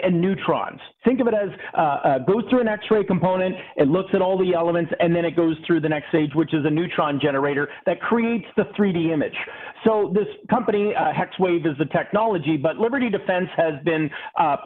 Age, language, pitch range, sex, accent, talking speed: 40-59, English, 165-200 Hz, male, American, 210 wpm